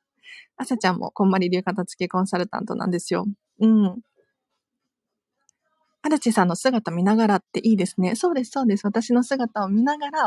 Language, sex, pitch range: Japanese, female, 190-270 Hz